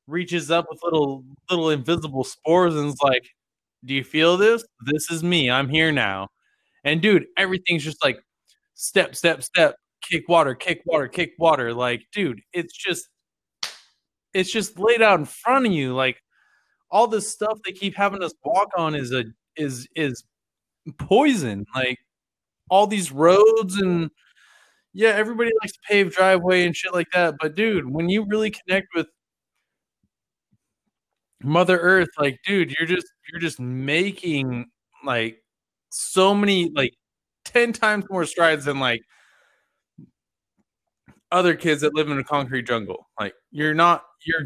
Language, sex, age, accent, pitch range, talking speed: English, male, 20-39, American, 140-190 Hz, 155 wpm